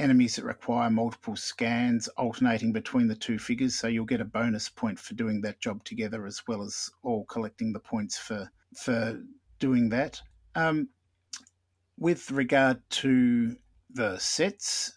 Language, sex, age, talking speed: English, male, 50-69, 150 wpm